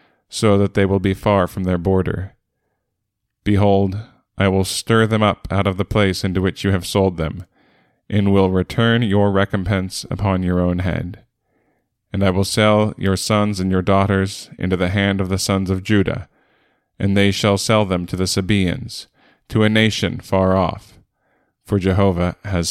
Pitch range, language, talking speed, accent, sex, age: 95-110 Hz, English, 175 wpm, American, male, 20-39